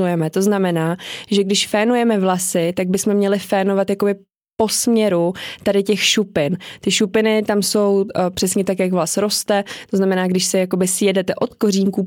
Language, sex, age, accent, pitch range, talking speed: Czech, female, 20-39, native, 185-205 Hz, 165 wpm